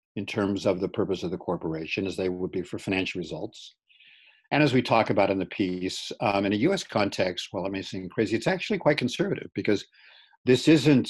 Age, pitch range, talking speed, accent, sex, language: 50-69, 95-115 Hz, 215 wpm, American, male, English